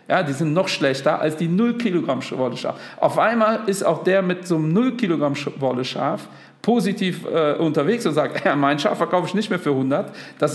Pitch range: 150-215 Hz